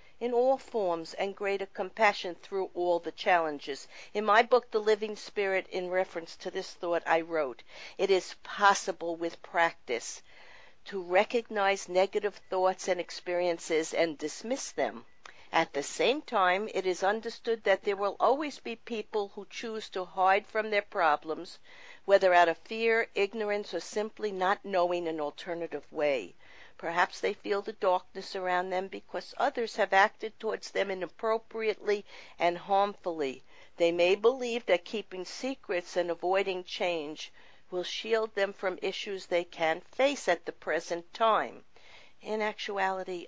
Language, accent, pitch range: English, American, 175-210 Hz